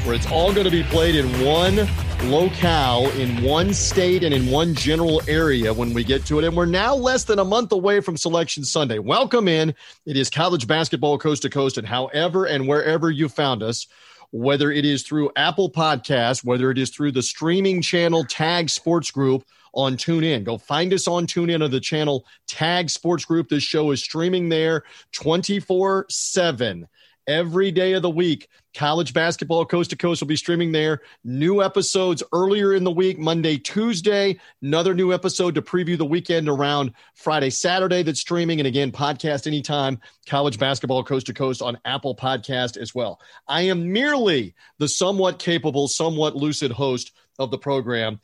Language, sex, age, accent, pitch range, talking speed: English, male, 40-59, American, 135-175 Hz, 180 wpm